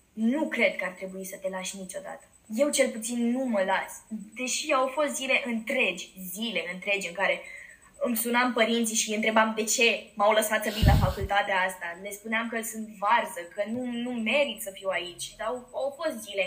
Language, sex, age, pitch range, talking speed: Romanian, female, 20-39, 210-285 Hz, 200 wpm